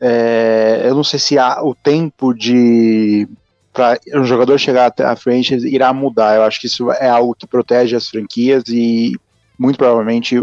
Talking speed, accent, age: 175 wpm, Brazilian, 20-39